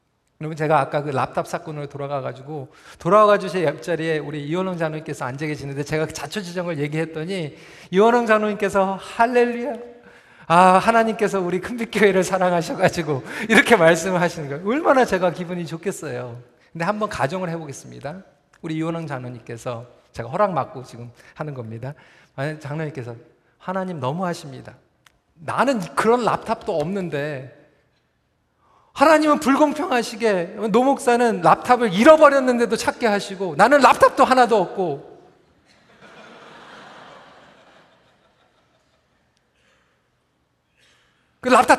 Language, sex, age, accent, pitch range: Korean, male, 40-59, native, 155-240 Hz